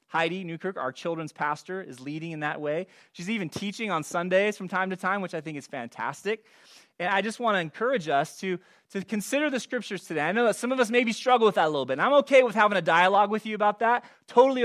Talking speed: 255 wpm